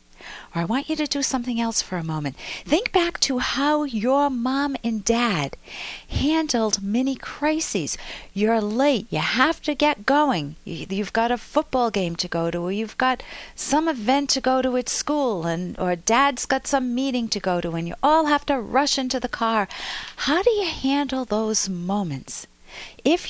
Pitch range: 185-265 Hz